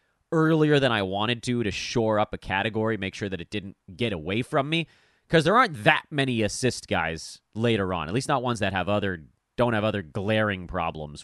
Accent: American